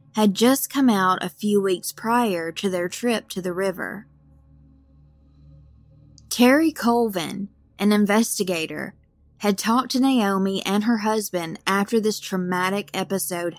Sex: female